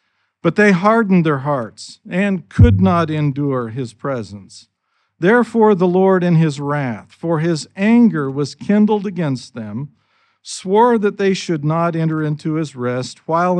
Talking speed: 150 wpm